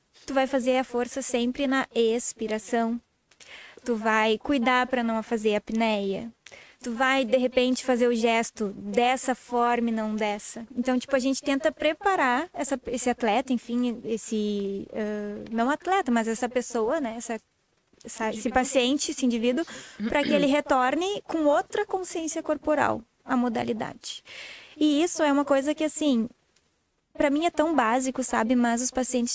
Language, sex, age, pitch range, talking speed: Portuguese, female, 20-39, 230-280 Hz, 155 wpm